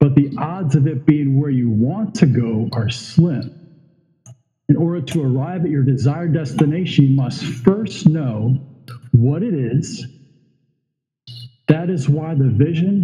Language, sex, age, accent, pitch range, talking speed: English, male, 50-69, American, 130-170 Hz, 150 wpm